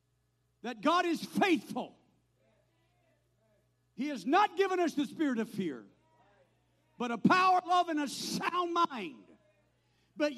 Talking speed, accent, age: 135 wpm, American, 50-69